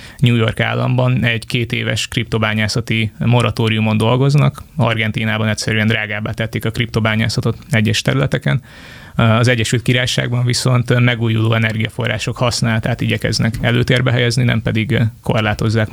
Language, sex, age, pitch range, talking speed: Hungarian, male, 20-39, 110-125 Hz, 115 wpm